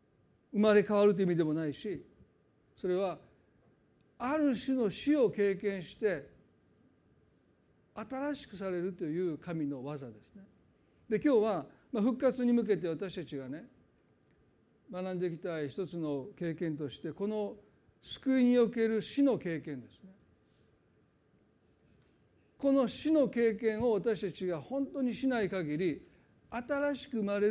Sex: male